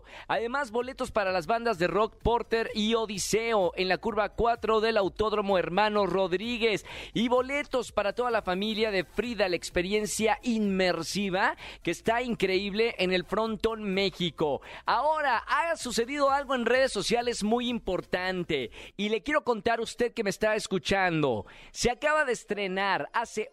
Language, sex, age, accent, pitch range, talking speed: Spanish, male, 40-59, Mexican, 195-240 Hz, 155 wpm